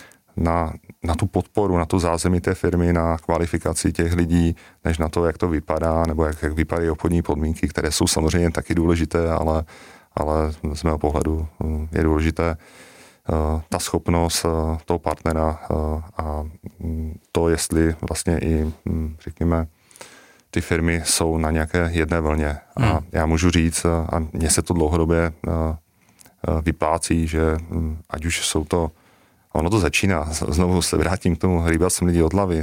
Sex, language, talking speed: male, Czech, 150 wpm